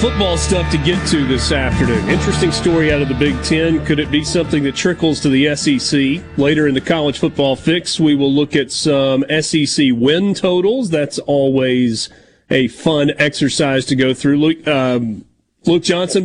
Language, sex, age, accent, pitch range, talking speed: English, male, 40-59, American, 130-165 Hz, 180 wpm